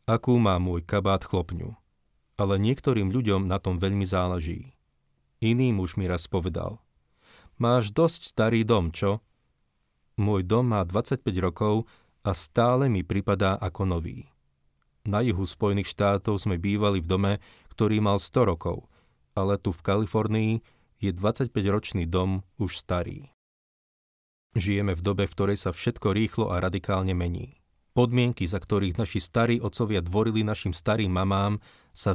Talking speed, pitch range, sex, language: 140 wpm, 90-110 Hz, male, Slovak